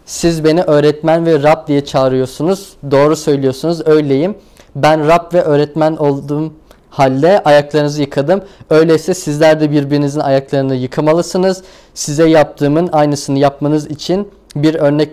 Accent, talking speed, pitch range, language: native, 125 wpm, 135-160 Hz, Turkish